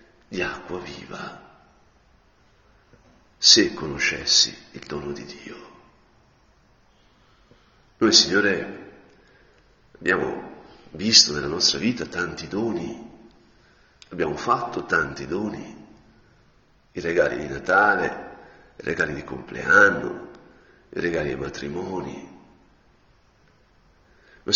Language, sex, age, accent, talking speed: Italian, male, 60-79, native, 85 wpm